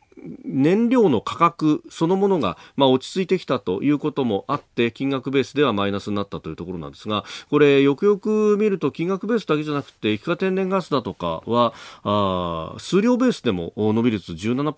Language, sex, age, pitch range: Japanese, male, 40-59, 95-140 Hz